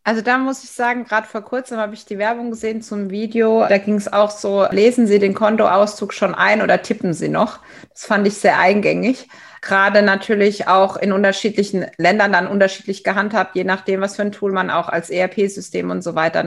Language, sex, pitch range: German, female, 180-215 Hz